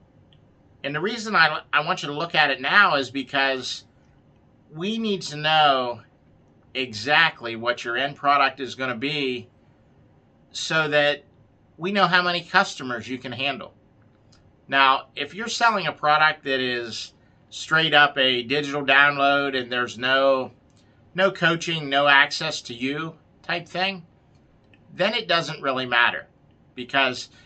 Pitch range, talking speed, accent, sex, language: 125-155 Hz, 145 wpm, American, male, English